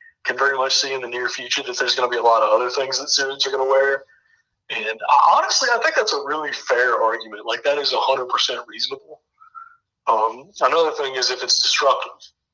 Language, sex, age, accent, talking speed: English, male, 30-49, American, 225 wpm